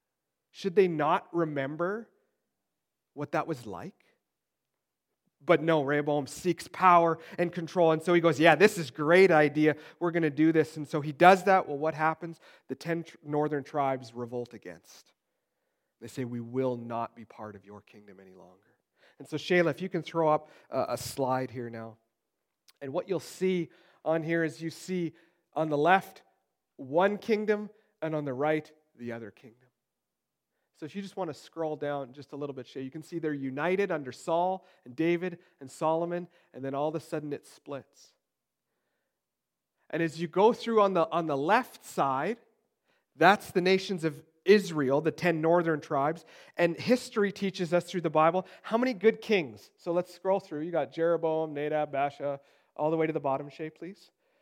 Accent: American